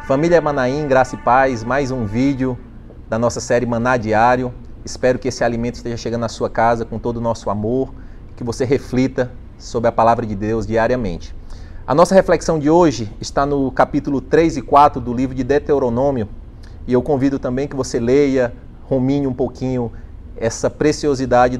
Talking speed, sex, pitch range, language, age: 175 wpm, male, 115-145 Hz, Portuguese, 30-49